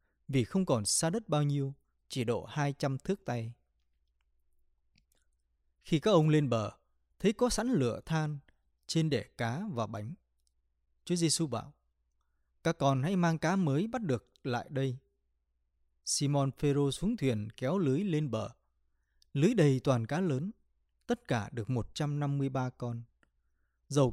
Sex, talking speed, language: male, 145 wpm, English